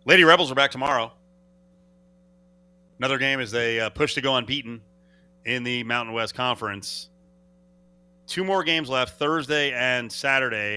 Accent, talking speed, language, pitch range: American, 140 wpm, English, 105-155 Hz